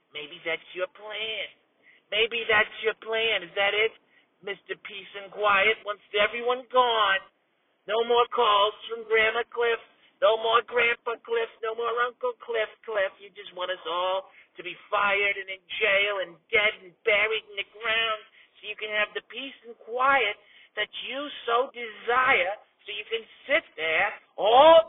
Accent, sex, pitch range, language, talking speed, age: American, male, 195-240 Hz, English, 165 wpm, 50-69